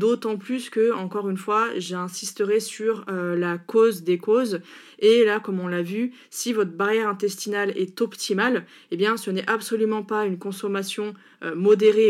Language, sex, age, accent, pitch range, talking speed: French, female, 20-39, French, 185-215 Hz, 170 wpm